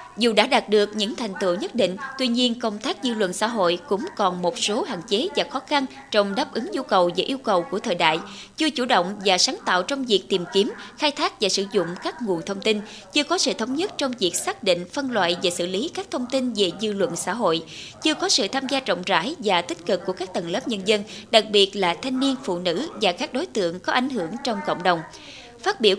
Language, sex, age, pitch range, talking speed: Vietnamese, female, 20-39, 185-265 Hz, 260 wpm